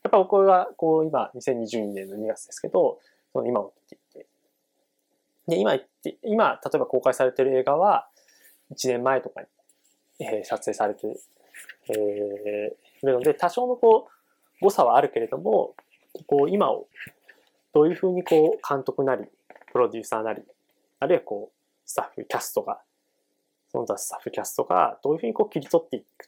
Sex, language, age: male, Japanese, 20-39